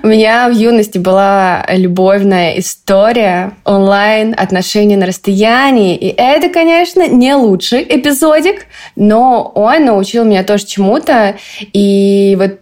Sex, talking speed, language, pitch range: female, 120 wpm, Russian, 190-230 Hz